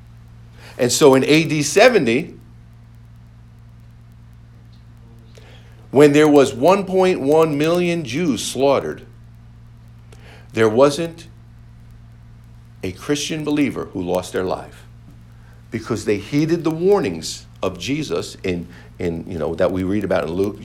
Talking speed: 110 wpm